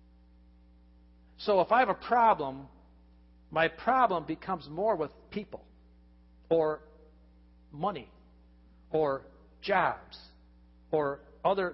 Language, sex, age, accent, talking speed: English, male, 50-69, American, 90 wpm